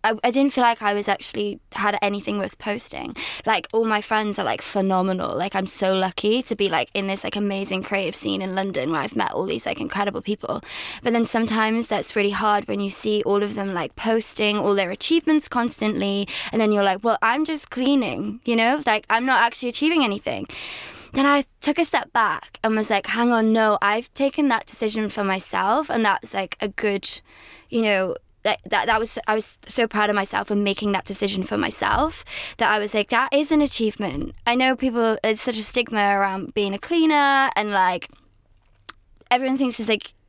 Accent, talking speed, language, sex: British, 210 wpm, English, female